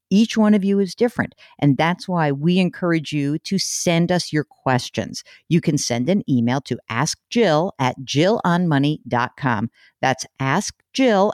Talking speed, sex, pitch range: 150 wpm, female, 145-220 Hz